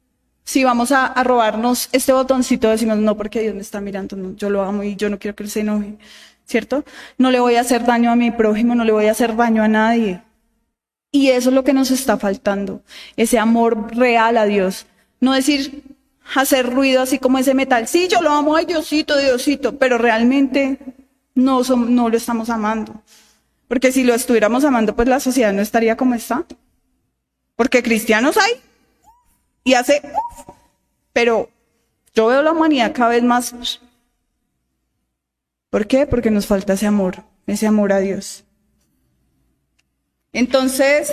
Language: Spanish